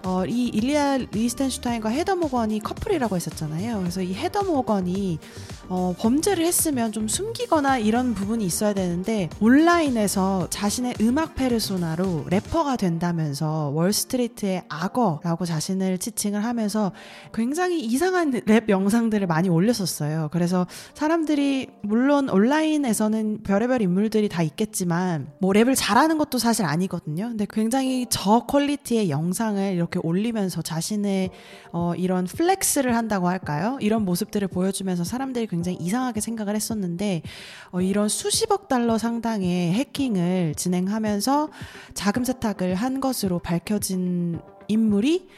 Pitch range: 180-245 Hz